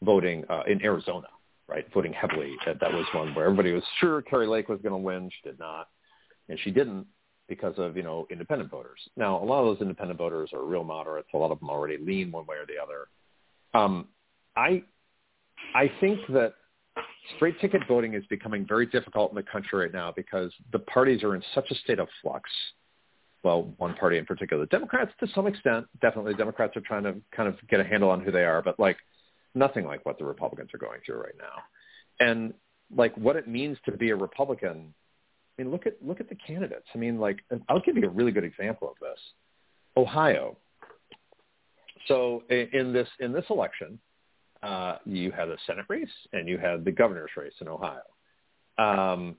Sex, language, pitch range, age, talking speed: male, English, 95-155 Hz, 50-69, 205 wpm